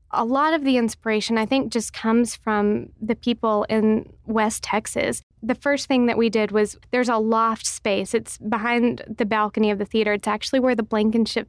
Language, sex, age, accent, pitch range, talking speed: English, female, 20-39, American, 210-235 Hz, 200 wpm